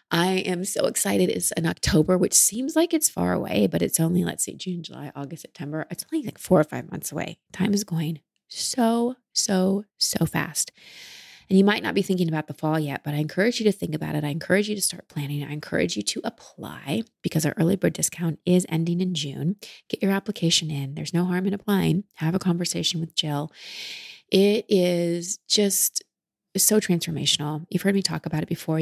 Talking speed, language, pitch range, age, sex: 210 wpm, English, 155-195 Hz, 30-49, female